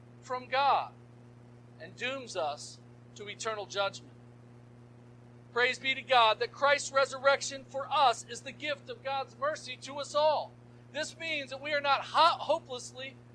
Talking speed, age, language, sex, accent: 155 wpm, 50-69, English, male, American